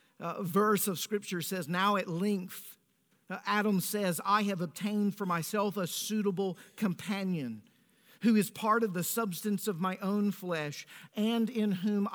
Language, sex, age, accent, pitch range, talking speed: English, male, 50-69, American, 165-205 Hz, 160 wpm